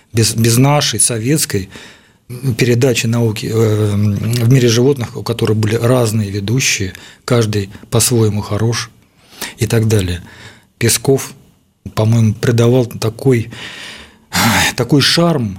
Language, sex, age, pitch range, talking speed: Russian, male, 40-59, 110-140 Hz, 100 wpm